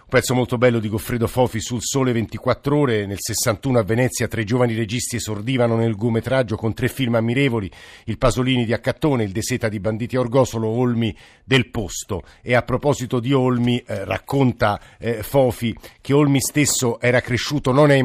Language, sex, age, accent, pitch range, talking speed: Italian, male, 50-69, native, 115-135 Hz, 175 wpm